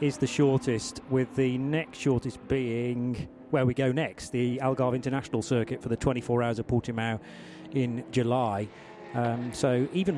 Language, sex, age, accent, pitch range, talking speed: English, male, 30-49, British, 130-180 Hz, 160 wpm